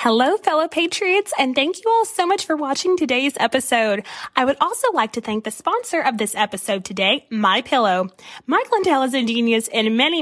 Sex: female